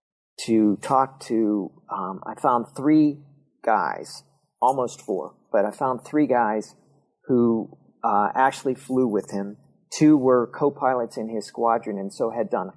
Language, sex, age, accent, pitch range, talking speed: English, male, 40-59, American, 105-130 Hz, 145 wpm